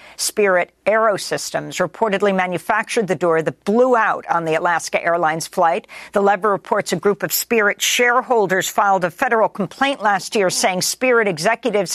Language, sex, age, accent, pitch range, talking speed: English, female, 50-69, American, 170-215 Hz, 155 wpm